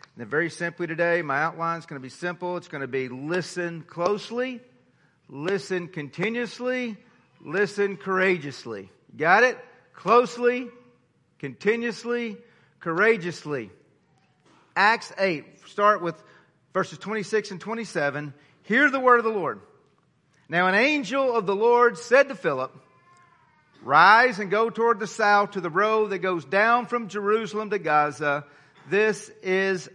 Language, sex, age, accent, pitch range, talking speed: English, male, 40-59, American, 160-225 Hz, 135 wpm